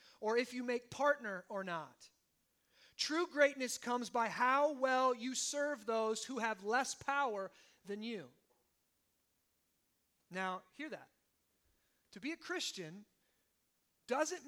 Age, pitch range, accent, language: 30-49, 195-260 Hz, American, English